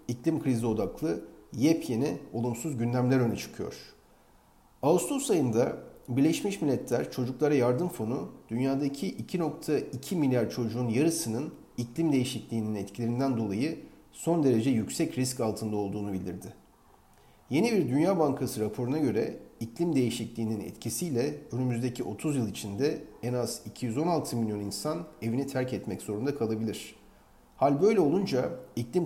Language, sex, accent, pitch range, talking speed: Turkish, male, native, 115-150 Hz, 120 wpm